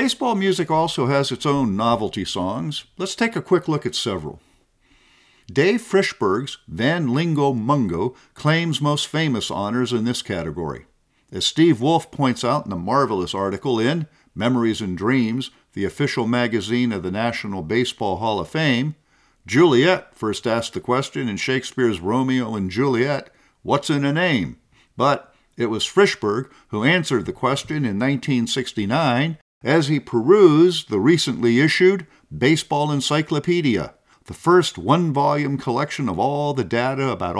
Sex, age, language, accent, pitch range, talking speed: male, 50-69, English, American, 120-160 Hz, 145 wpm